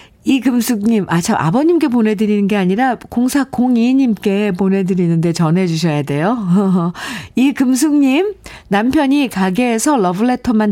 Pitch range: 165-235 Hz